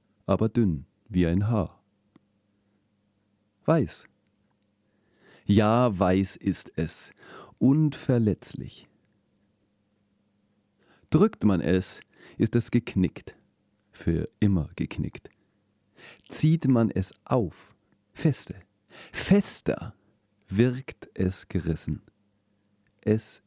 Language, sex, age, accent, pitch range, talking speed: German, male, 40-59, German, 100-110 Hz, 75 wpm